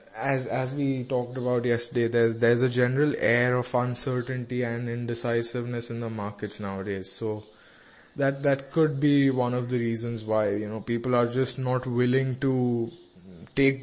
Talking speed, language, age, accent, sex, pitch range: 165 wpm, English, 20-39, Indian, male, 115-130 Hz